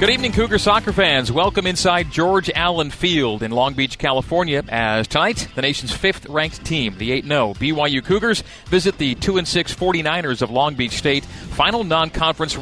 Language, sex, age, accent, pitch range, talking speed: English, male, 40-59, American, 130-170 Hz, 160 wpm